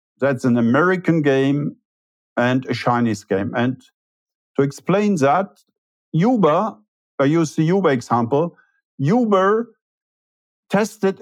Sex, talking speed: male, 105 wpm